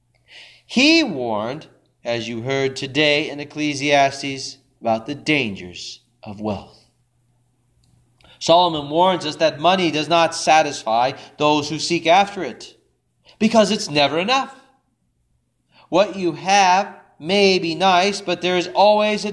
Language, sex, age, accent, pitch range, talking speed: English, male, 40-59, American, 120-195 Hz, 125 wpm